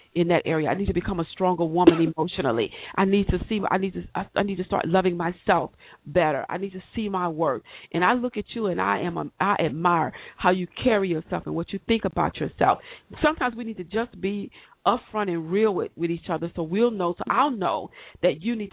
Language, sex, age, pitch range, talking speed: English, female, 40-59, 170-205 Hz, 240 wpm